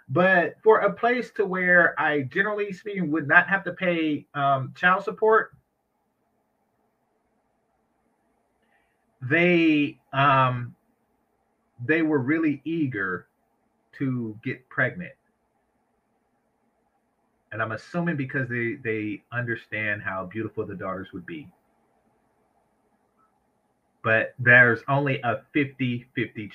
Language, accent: English, American